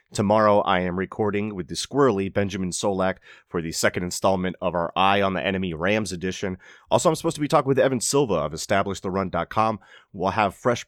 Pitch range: 90-105 Hz